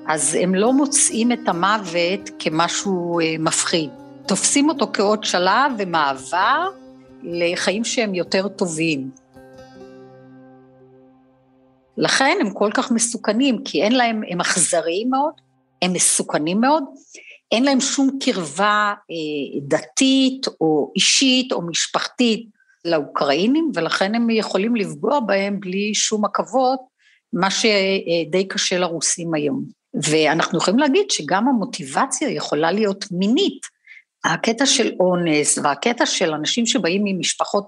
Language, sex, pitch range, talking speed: Hebrew, female, 165-250 Hz, 110 wpm